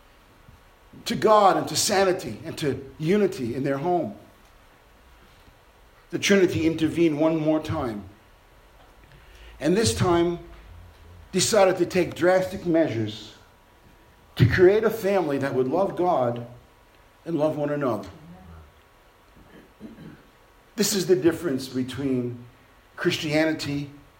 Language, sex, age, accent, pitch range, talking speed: English, male, 50-69, American, 120-185 Hz, 105 wpm